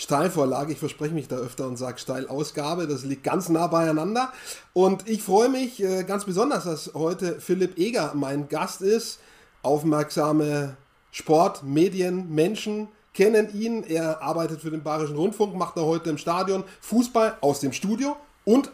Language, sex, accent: German, male, German